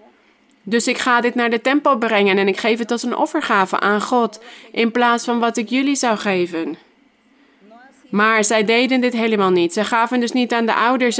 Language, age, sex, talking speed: Dutch, 20-39, female, 205 wpm